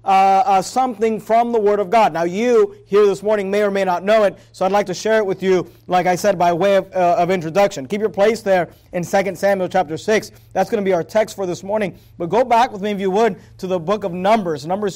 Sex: male